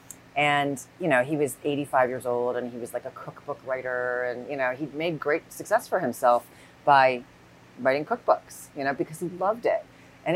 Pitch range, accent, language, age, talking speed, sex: 125-165 Hz, American, English, 30-49, 195 wpm, female